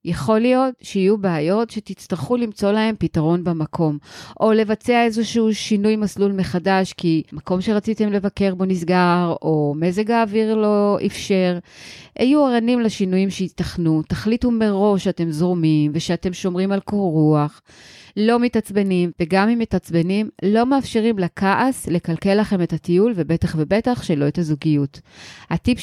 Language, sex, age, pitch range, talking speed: Hebrew, female, 30-49, 165-215 Hz, 130 wpm